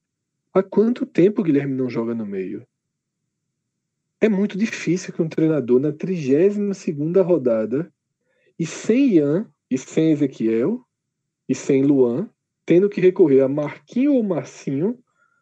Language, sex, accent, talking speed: Portuguese, male, Brazilian, 130 wpm